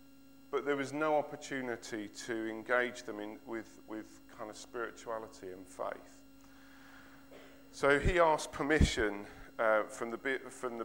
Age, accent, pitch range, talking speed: 40-59, British, 110-170 Hz, 120 wpm